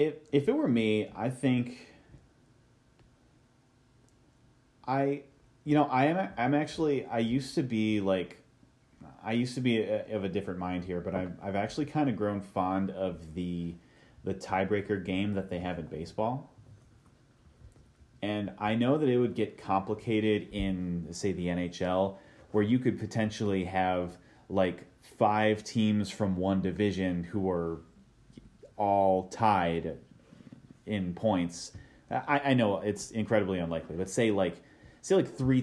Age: 30-49